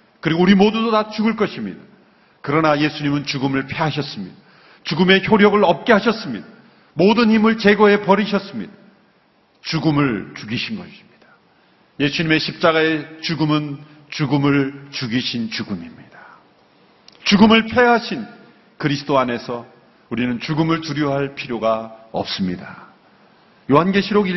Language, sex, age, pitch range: Korean, male, 40-59, 135-185 Hz